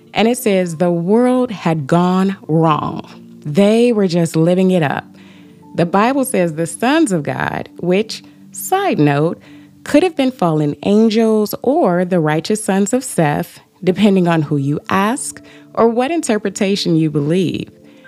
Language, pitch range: English, 165-245 Hz